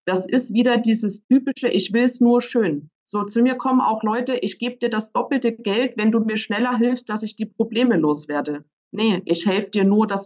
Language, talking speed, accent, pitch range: German, 220 wpm, German, 185-240 Hz